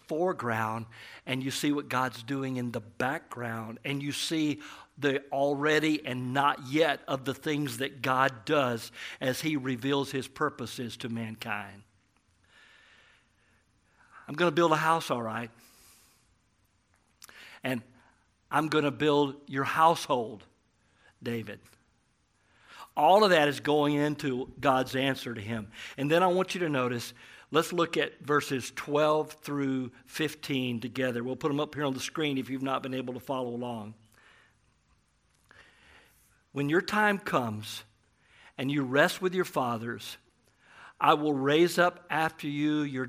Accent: American